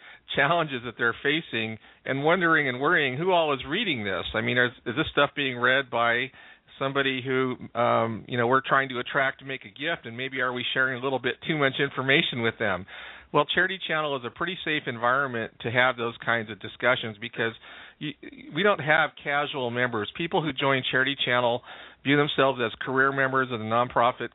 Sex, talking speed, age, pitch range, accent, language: male, 200 wpm, 40-59, 115-140 Hz, American, English